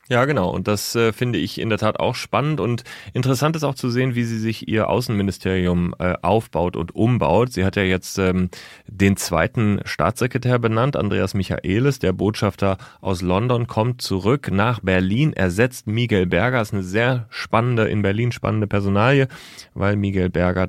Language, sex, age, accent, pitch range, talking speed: German, male, 30-49, German, 95-120 Hz, 175 wpm